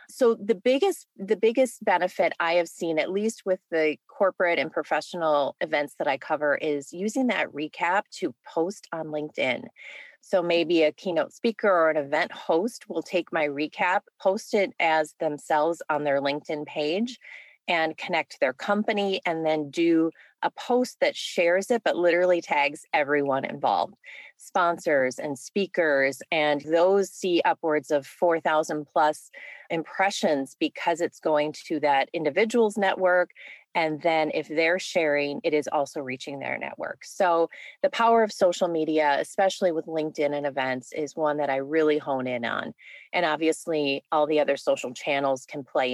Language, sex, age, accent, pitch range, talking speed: English, female, 30-49, American, 150-190 Hz, 160 wpm